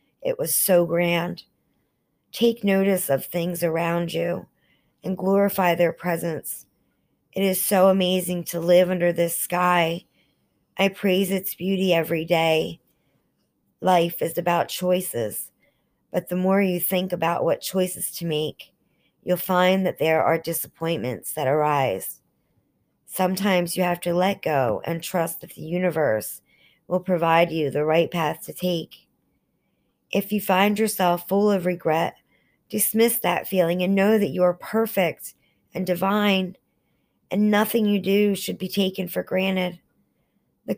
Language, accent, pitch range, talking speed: English, American, 170-195 Hz, 145 wpm